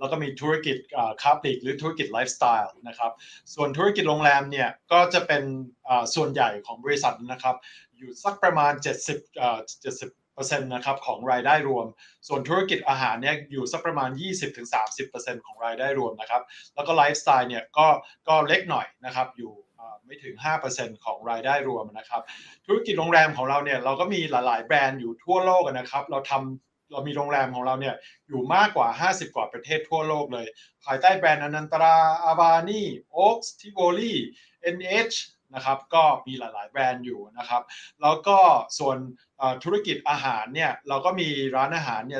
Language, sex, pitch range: Thai, male, 130-170 Hz